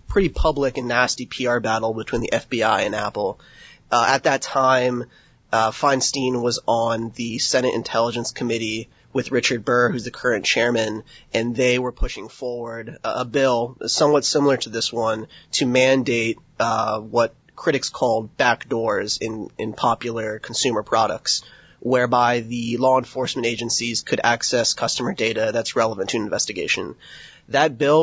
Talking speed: 150 wpm